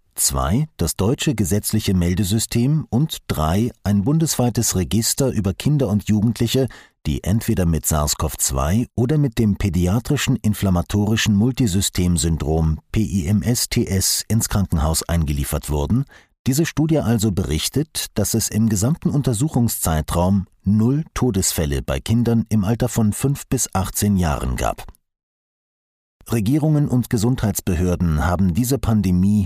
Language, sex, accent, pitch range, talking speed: German, male, German, 90-125 Hz, 115 wpm